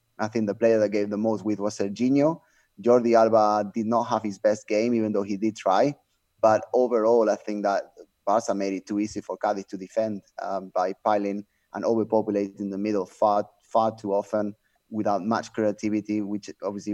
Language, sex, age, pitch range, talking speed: English, male, 20-39, 100-110 Hz, 190 wpm